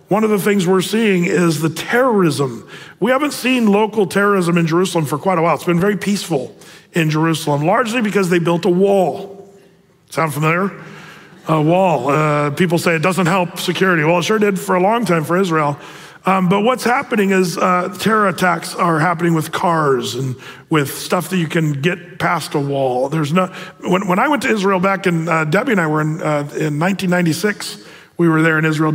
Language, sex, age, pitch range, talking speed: English, male, 40-59, 155-195 Hz, 205 wpm